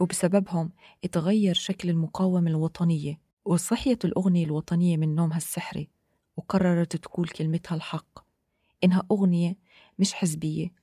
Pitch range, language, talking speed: 160-185 Hz, Arabic, 105 wpm